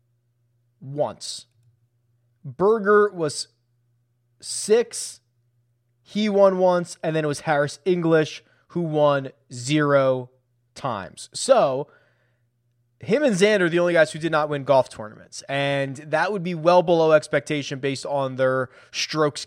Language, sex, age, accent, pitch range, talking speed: English, male, 20-39, American, 125-170 Hz, 125 wpm